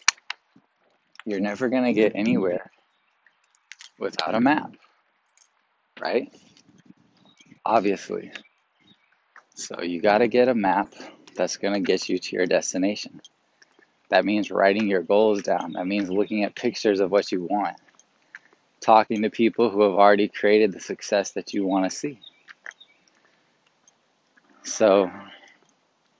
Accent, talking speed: American, 120 wpm